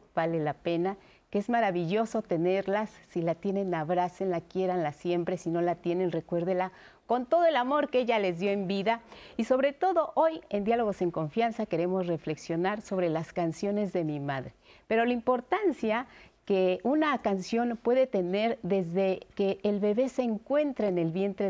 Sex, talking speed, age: female, 175 wpm, 40-59